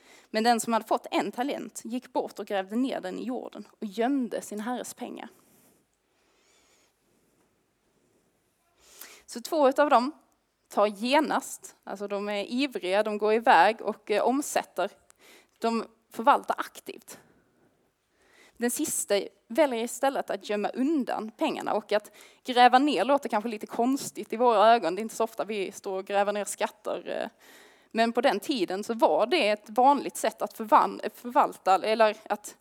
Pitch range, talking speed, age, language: 210-275 Hz, 155 wpm, 20-39, Swedish